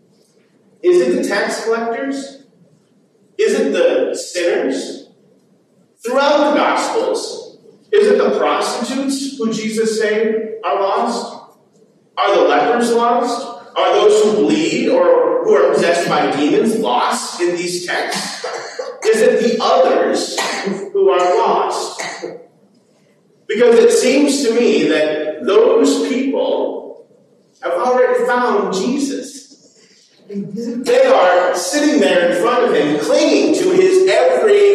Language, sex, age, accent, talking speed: English, male, 40-59, American, 120 wpm